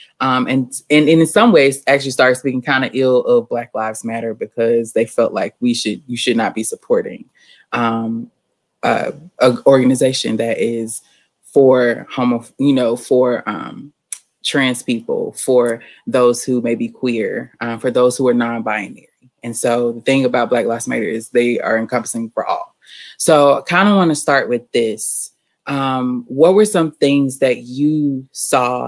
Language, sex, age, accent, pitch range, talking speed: English, female, 20-39, American, 120-135 Hz, 175 wpm